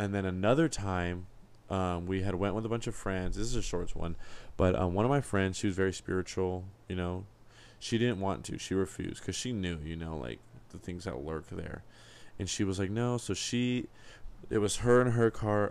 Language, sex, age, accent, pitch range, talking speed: English, male, 20-39, American, 90-115 Hz, 230 wpm